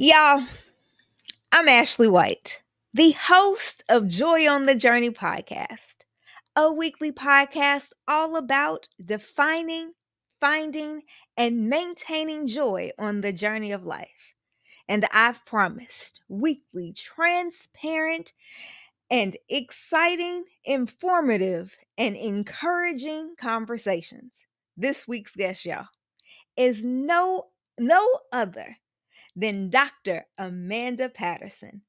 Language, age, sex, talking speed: English, 20-39, female, 95 wpm